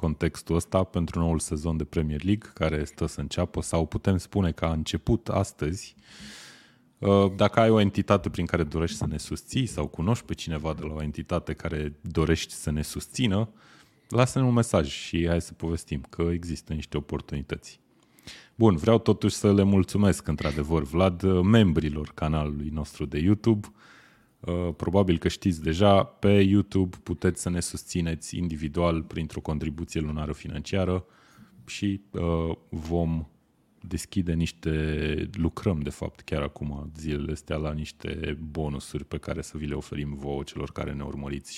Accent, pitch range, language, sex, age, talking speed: native, 80-95 Hz, Romanian, male, 30-49, 155 wpm